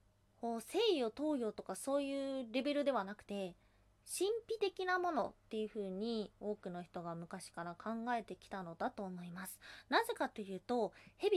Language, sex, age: Japanese, female, 20-39